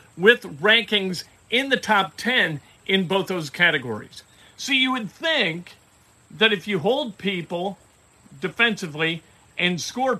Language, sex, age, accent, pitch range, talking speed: English, male, 50-69, American, 165-230 Hz, 130 wpm